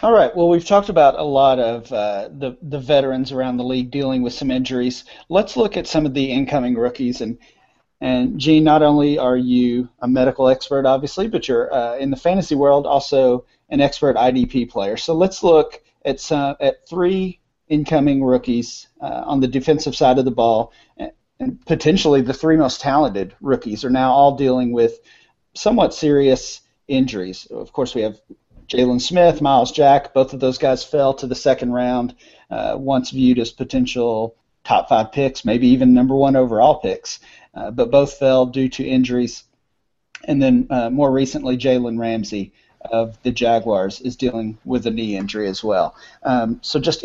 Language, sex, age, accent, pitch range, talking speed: English, male, 40-59, American, 125-155 Hz, 180 wpm